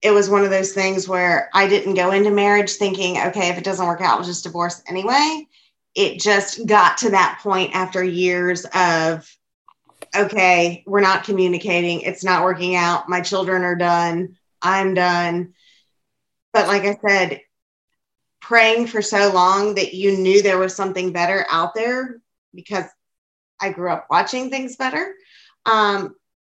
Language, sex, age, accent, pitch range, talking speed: English, female, 20-39, American, 180-215 Hz, 165 wpm